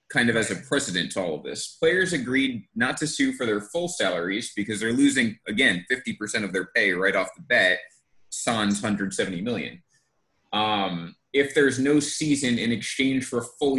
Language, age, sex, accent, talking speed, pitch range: English, 30-49, male, American, 185 wpm, 105-140 Hz